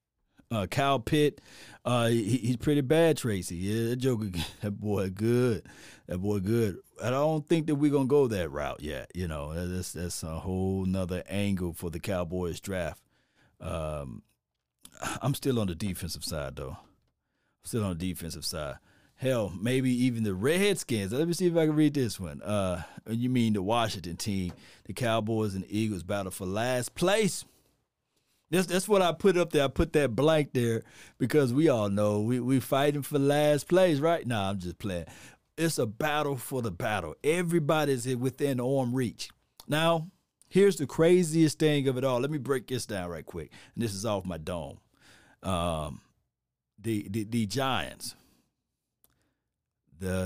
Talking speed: 170 wpm